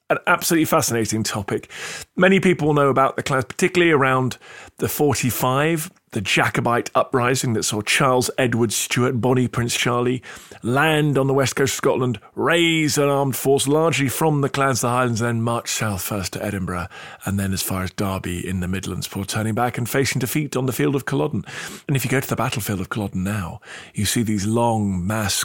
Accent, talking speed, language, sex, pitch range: British, 200 wpm, English, male, 100-135 Hz